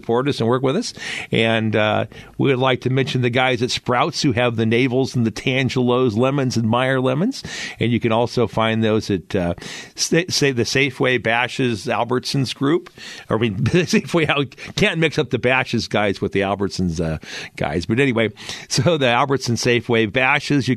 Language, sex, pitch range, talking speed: English, male, 110-130 Hz, 185 wpm